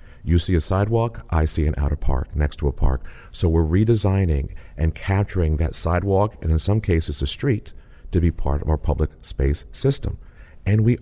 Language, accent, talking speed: English, American, 195 wpm